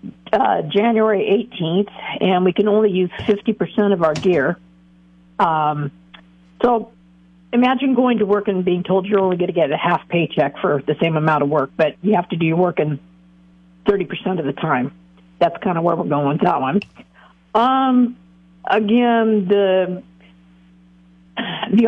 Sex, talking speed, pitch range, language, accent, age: female, 170 wpm, 150-225 Hz, English, American, 50-69